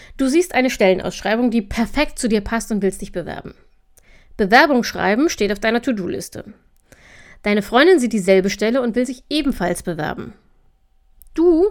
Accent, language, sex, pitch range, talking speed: German, German, female, 200-265 Hz, 155 wpm